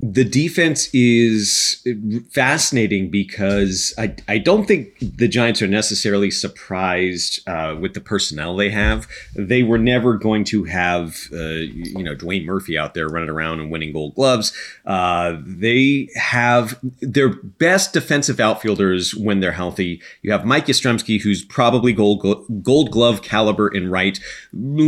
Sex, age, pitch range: male, 30-49, 100-125 Hz